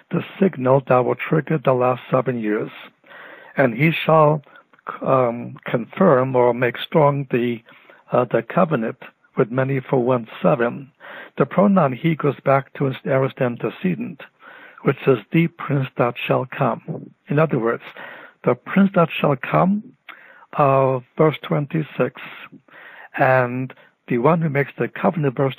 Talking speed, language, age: 150 wpm, English, 60-79